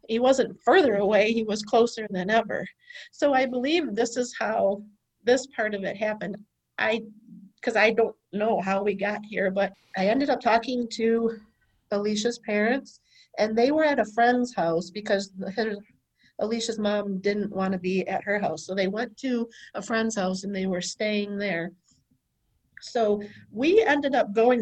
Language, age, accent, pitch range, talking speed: English, 50-69, American, 200-240 Hz, 175 wpm